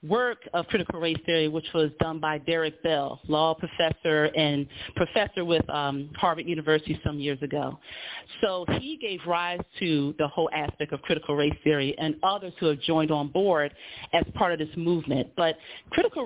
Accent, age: American, 40-59